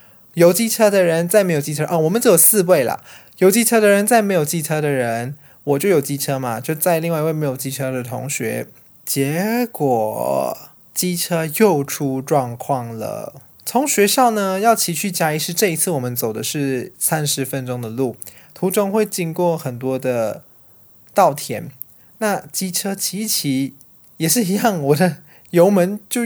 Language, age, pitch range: Chinese, 20-39, 135-185 Hz